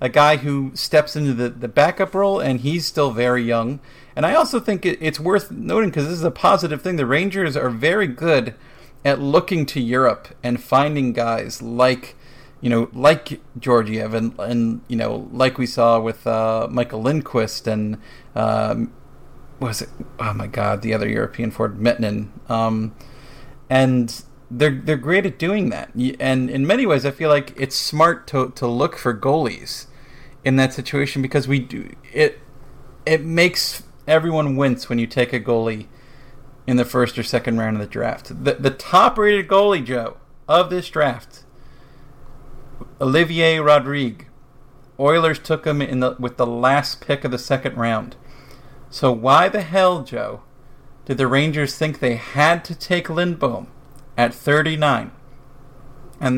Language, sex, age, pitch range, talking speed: English, male, 40-59, 120-150 Hz, 170 wpm